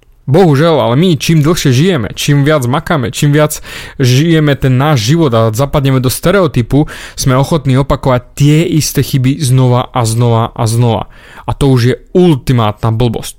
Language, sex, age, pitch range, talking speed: Slovak, male, 20-39, 125-155 Hz, 160 wpm